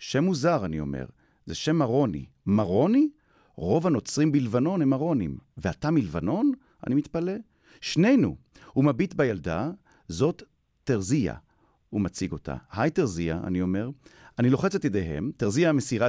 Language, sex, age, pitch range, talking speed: Hebrew, male, 40-59, 90-155 Hz, 135 wpm